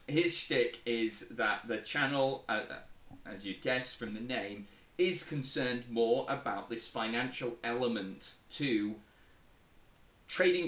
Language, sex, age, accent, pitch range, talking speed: English, male, 30-49, British, 110-140 Hz, 125 wpm